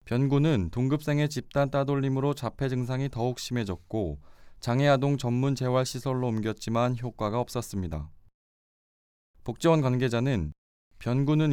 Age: 20-39